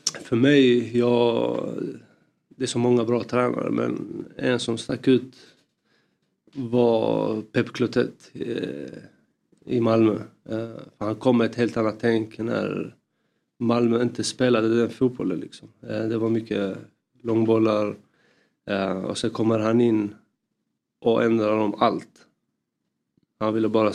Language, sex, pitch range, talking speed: Swedish, male, 110-130 Hz, 125 wpm